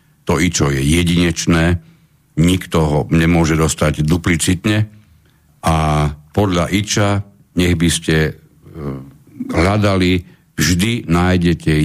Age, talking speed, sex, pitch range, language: 60-79, 90 wpm, male, 80-95 Hz, Slovak